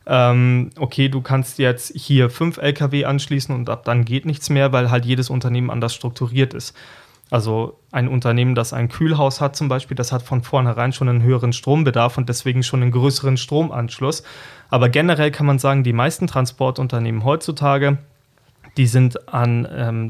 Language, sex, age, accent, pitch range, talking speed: German, male, 30-49, German, 120-145 Hz, 170 wpm